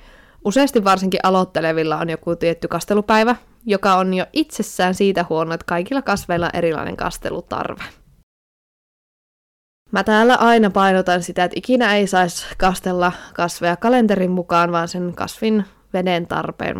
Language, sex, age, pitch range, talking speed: Finnish, female, 20-39, 170-205 Hz, 130 wpm